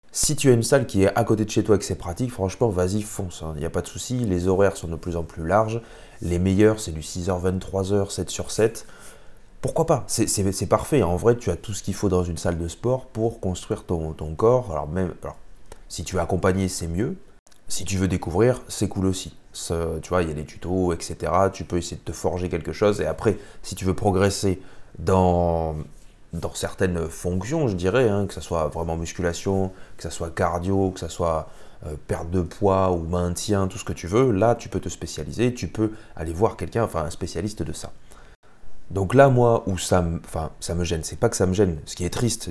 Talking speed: 240 wpm